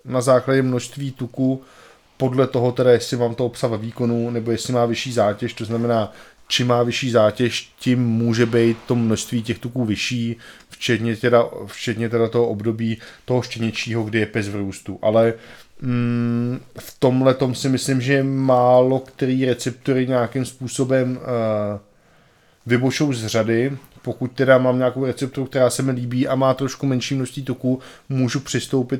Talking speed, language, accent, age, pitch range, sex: 160 wpm, Czech, native, 20-39, 120-130 Hz, male